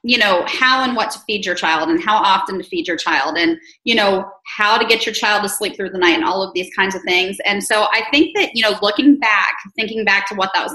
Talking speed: 285 wpm